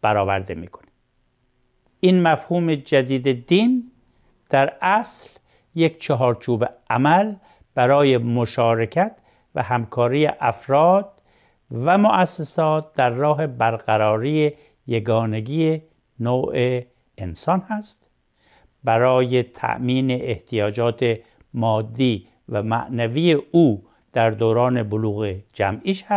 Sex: male